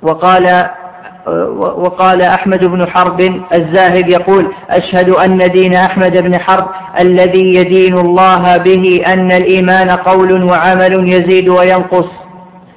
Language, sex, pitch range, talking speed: Arabic, female, 185-190 Hz, 105 wpm